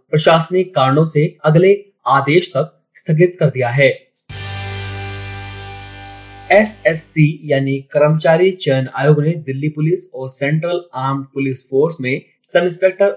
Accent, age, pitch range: native, 30-49, 130-170 Hz